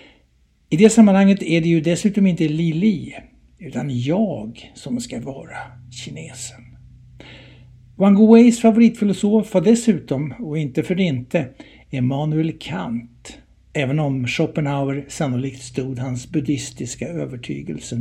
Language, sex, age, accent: Swedish, male, 60-79, native